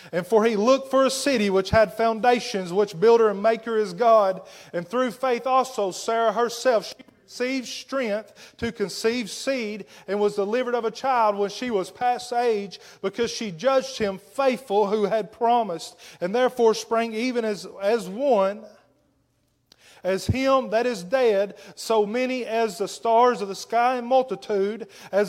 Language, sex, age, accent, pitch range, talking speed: English, male, 30-49, American, 200-240 Hz, 165 wpm